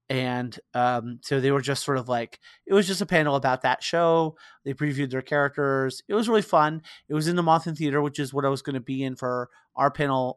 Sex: male